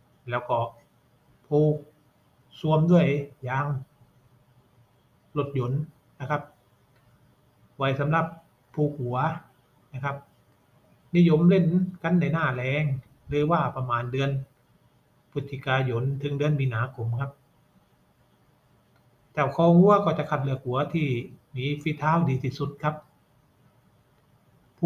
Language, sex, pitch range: Thai, male, 130-160 Hz